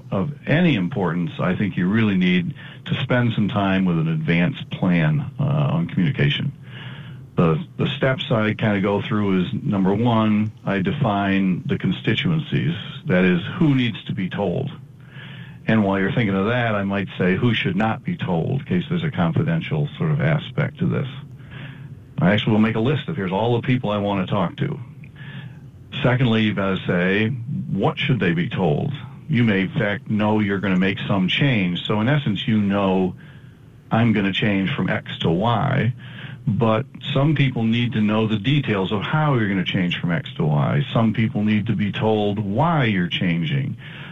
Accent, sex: American, male